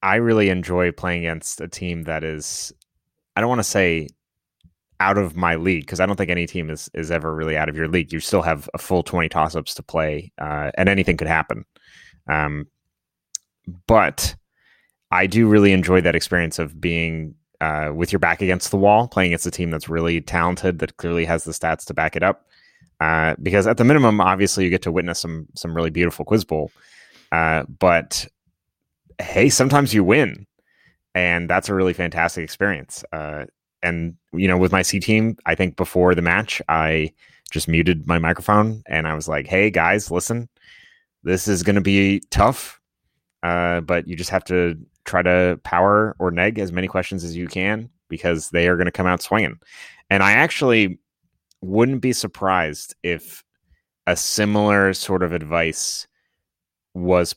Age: 30-49